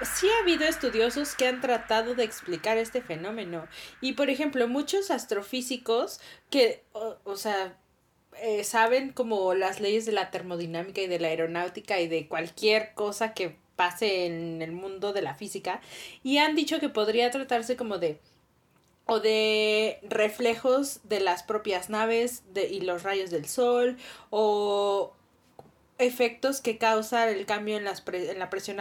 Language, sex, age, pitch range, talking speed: Spanish, female, 30-49, 190-240 Hz, 160 wpm